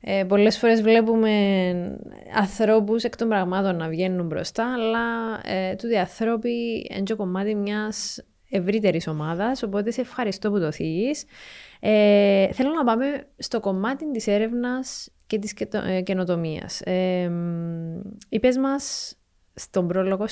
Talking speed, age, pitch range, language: 130 wpm, 20-39, 190-240 Hz, Greek